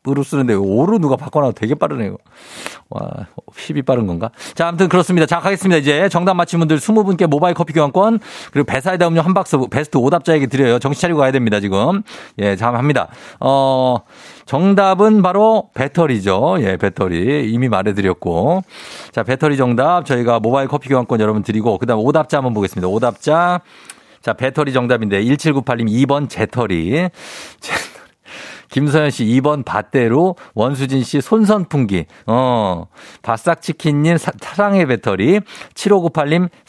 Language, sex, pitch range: Korean, male, 120-170 Hz